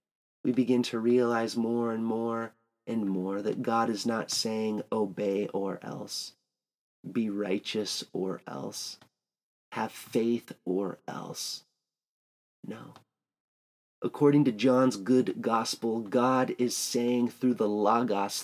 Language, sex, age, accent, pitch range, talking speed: English, male, 30-49, American, 110-130 Hz, 120 wpm